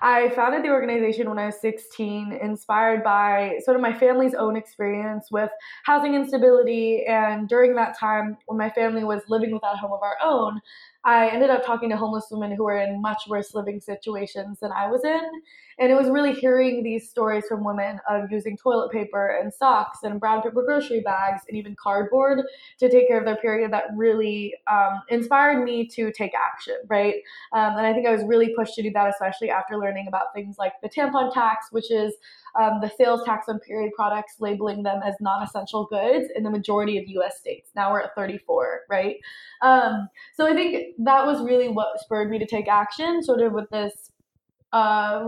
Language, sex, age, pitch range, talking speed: English, female, 20-39, 205-245 Hz, 205 wpm